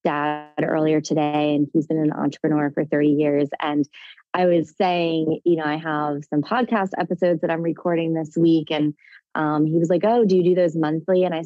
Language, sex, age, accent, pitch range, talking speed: English, female, 20-39, American, 150-175 Hz, 210 wpm